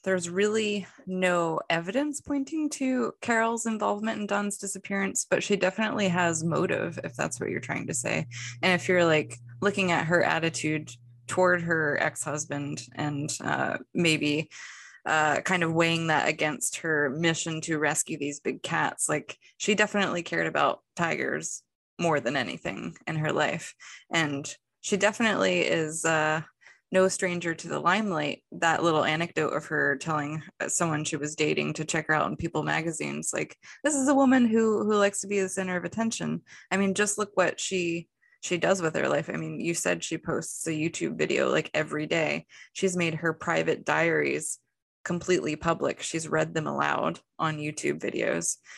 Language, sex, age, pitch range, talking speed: English, female, 20-39, 155-195 Hz, 170 wpm